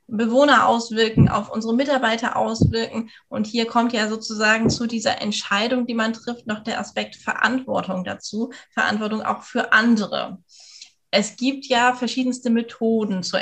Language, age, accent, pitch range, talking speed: German, 20-39, German, 205-255 Hz, 145 wpm